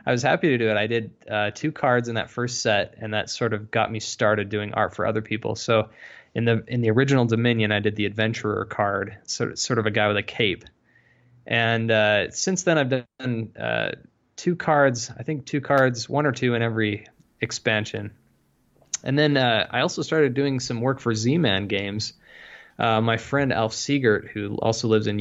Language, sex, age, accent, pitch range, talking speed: English, male, 20-39, American, 110-130 Hz, 210 wpm